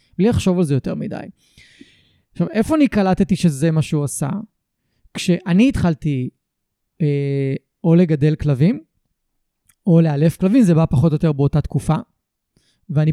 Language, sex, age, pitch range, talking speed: Hebrew, male, 20-39, 150-195 Hz, 140 wpm